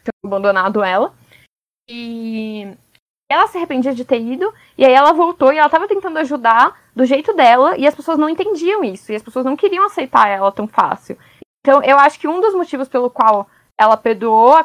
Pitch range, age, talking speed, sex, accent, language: 215-290 Hz, 10-29, 200 wpm, female, Brazilian, Portuguese